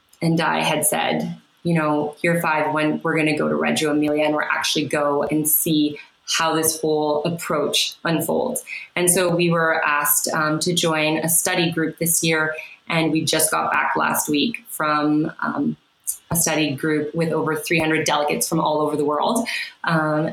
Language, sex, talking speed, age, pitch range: English, female, 185 wpm, 20-39, 160-195 Hz